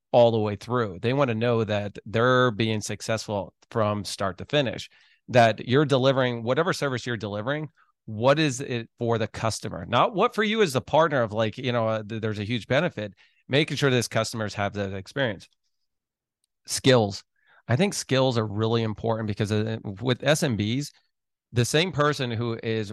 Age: 30-49